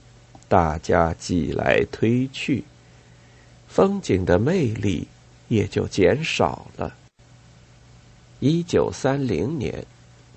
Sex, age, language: male, 50-69, Chinese